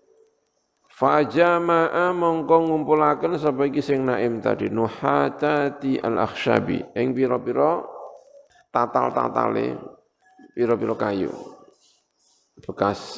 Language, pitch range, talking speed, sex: Indonesian, 110-170 Hz, 75 wpm, male